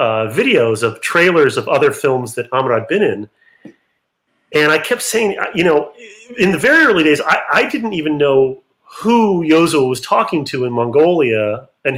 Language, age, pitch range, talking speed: English, 30-49, 125-195 Hz, 180 wpm